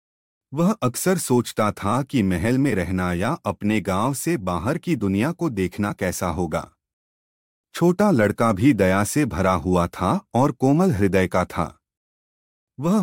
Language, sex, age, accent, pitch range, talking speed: Hindi, male, 30-49, native, 90-135 Hz, 150 wpm